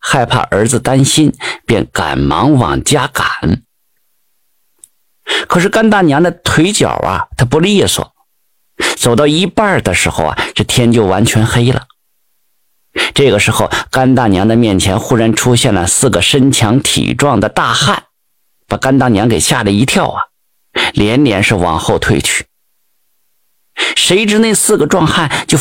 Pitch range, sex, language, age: 115-155 Hz, male, Chinese, 50-69